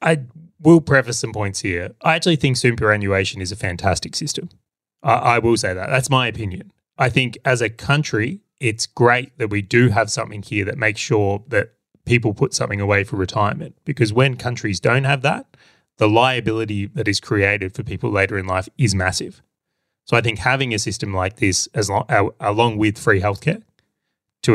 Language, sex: English, male